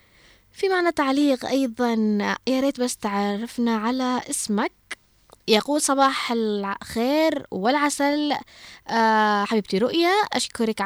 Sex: female